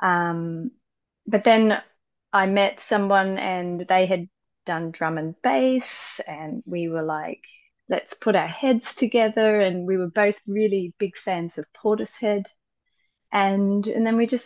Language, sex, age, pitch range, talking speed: English, female, 30-49, 170-210 Hz, 150 wpm